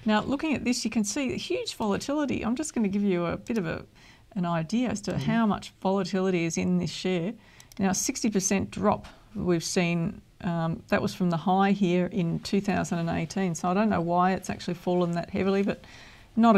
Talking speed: 205 wpm